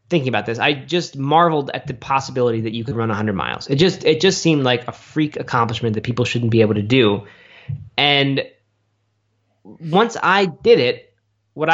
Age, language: 20-39, English